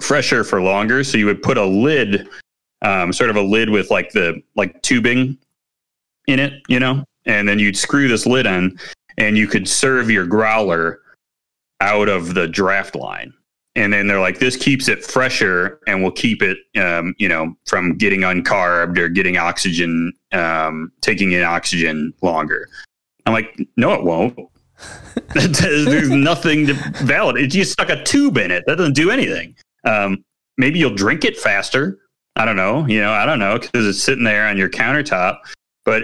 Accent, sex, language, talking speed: American, male, English, 185 wpm